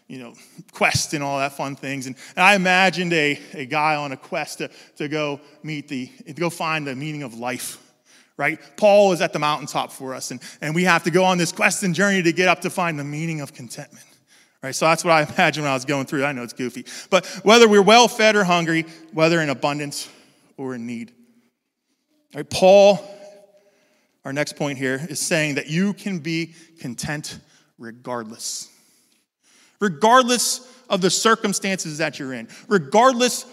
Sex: male